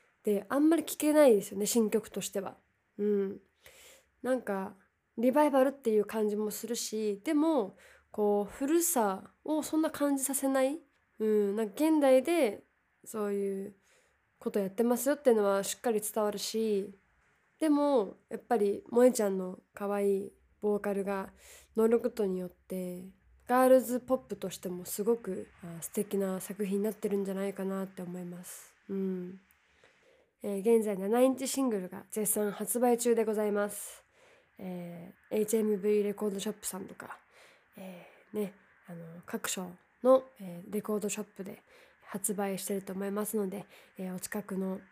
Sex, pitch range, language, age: female, 195-245 Hz, Japanese, 20-39